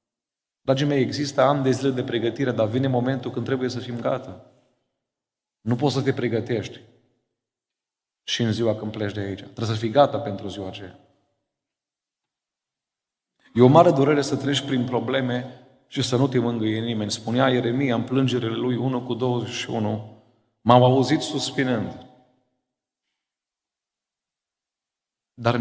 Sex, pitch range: male, 115-130 Hz